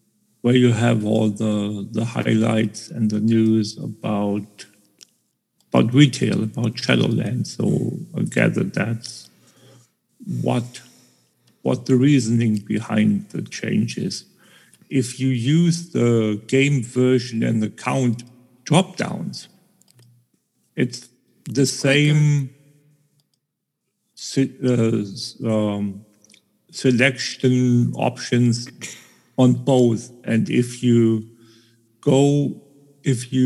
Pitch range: 115-135 Hz